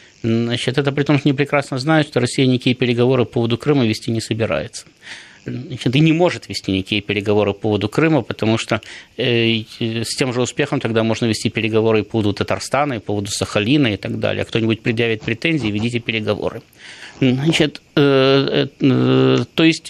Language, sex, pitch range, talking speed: Russian, male, 115-155 Hz, 185 wpm